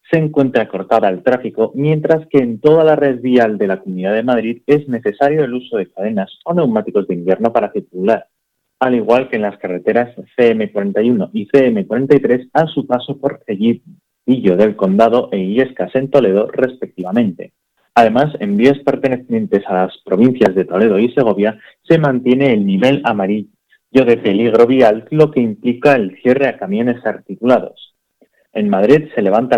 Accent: Spanish